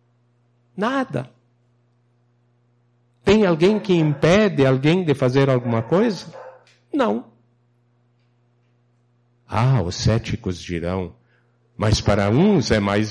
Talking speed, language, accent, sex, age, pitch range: 90 wpm, Portuguese, Brazilian, male, 60-79, 115-160 Hz